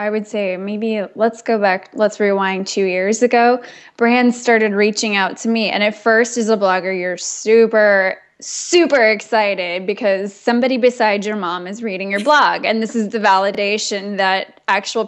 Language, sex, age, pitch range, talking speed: English, female, 10-29, 195-230 Hz, 175 wpm